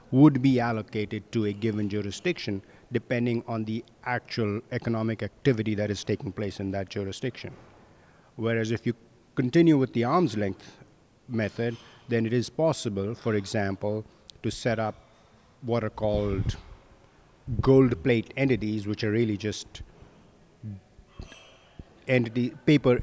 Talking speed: 130 wpm